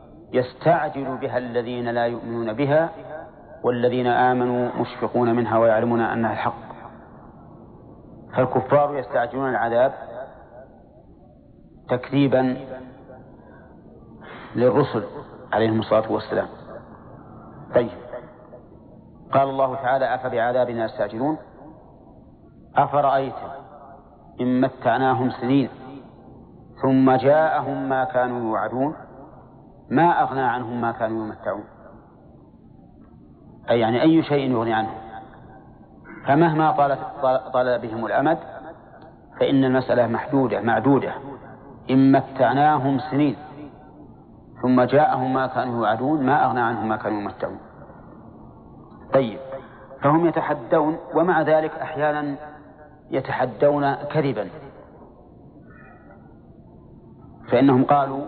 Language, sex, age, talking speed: Arabic, male, 40-59, 80 wpm